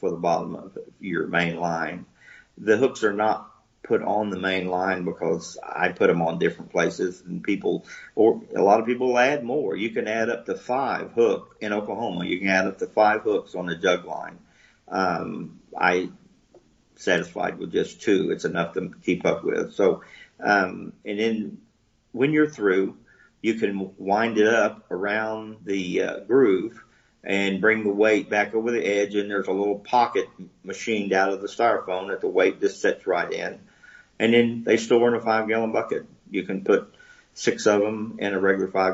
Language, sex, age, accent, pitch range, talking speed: English, male, 40-59, American, 95-130 Hz, 190 wpm